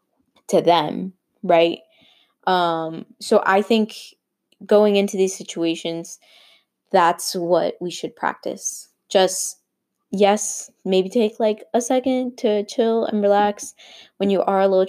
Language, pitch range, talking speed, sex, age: English, 180-220 Hz, 130 wpm, female, 20-39